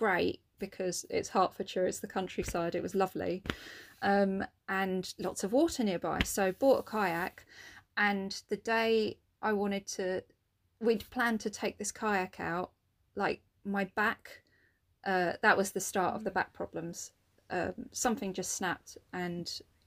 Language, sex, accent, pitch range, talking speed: English, female, British, 185-225 Hz, 150 wpm